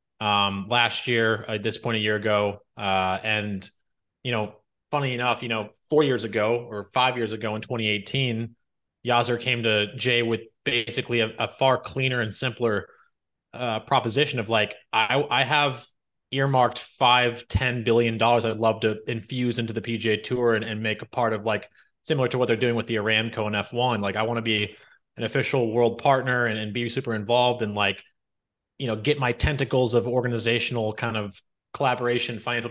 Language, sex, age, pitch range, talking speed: English, male, 20-39, 110-125 Hz, 190 wpm